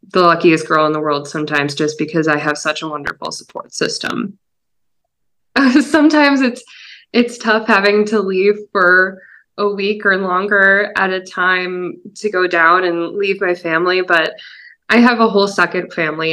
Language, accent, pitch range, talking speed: English, American, 175-210 Hz, 165 wpm